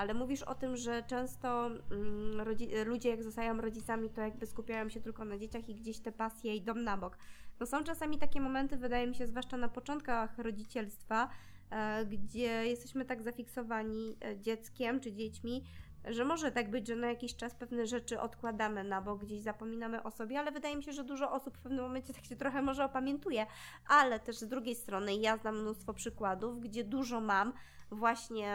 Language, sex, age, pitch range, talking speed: Polish, female, 20-39, 205-240 Hz, 185 wpm